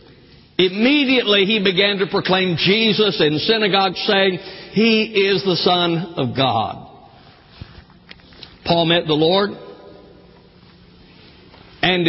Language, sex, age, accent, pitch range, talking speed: English, male, 60-79, American, 145-185 Hz, 100 wpm